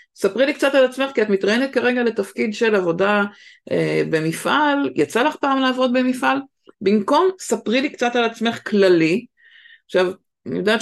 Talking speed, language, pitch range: 160 wpm, Hebrew, 180-240 Hz